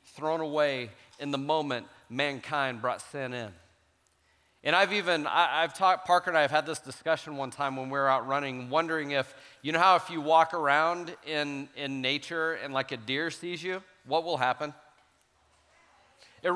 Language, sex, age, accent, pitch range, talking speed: English, male, 40-59, American, 125-180 Hz, 185 wpm